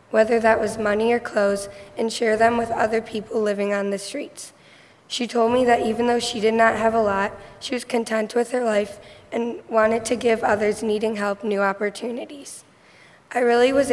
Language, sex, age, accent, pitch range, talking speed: English, female, 10-29, American, 210-235 Hz, 200 wpm